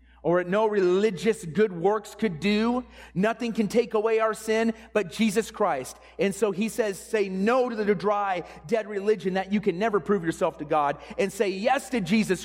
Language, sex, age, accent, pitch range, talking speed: English, male, 30-49, American, 210-250 Hz, 195 wpm